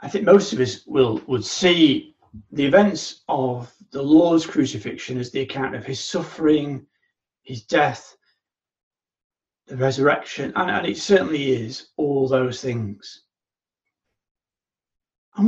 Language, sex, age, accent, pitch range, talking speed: English, male, 30-49, British, 135-195 Hz, 130 wpm